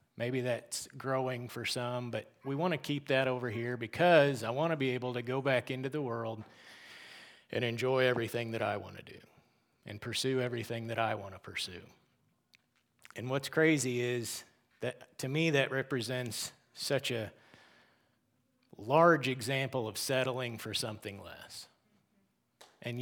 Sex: male